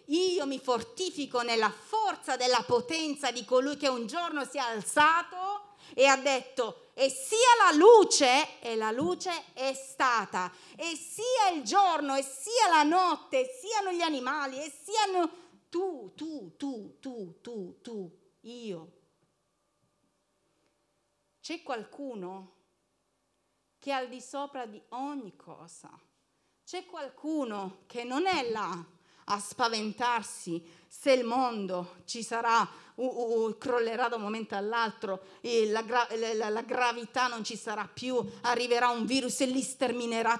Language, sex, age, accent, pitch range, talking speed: Italian, female, 40-59, native, 220-300 Hz, 145 wpm